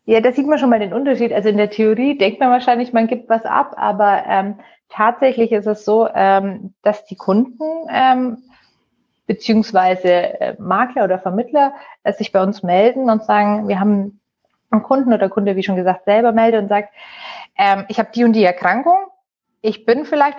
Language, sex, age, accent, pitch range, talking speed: German, female, 30-49, German, 195-245 Hz, 190 wpm